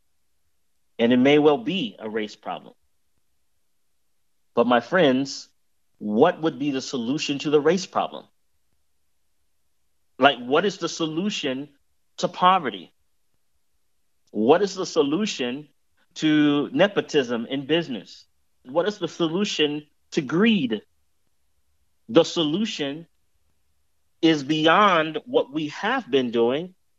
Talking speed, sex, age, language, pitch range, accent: 110 wpm, male, 40-59, English, 105-160 Hz, American